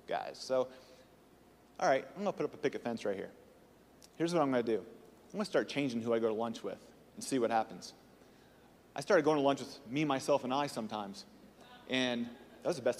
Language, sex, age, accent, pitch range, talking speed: English, male, 30-49, American, 130-165 Hz, 235 wpm